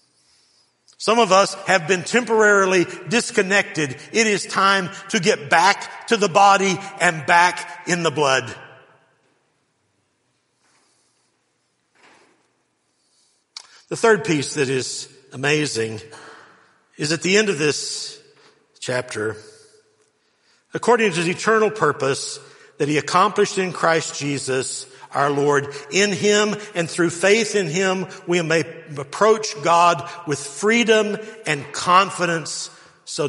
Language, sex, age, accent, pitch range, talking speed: English, male, 60-79, American, 155-215 Hz, 115 wpm